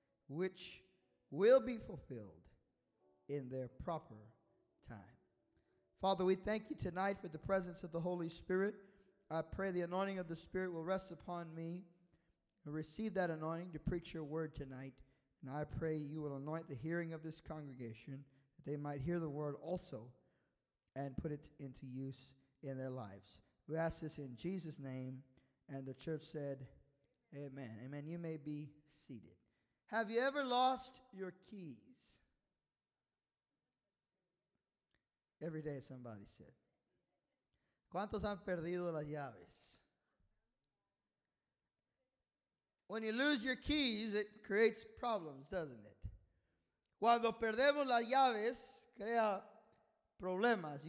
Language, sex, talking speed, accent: English, male, 130 wpm, American